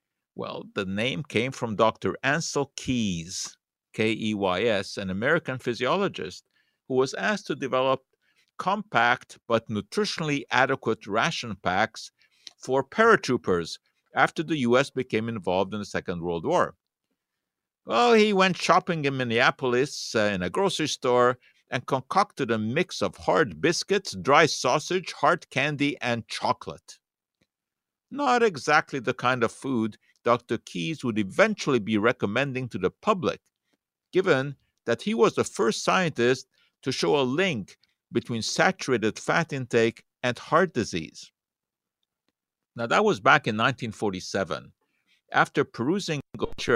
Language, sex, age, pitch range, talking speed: English, male, 50-69, 115-160 Hz, 125 wpm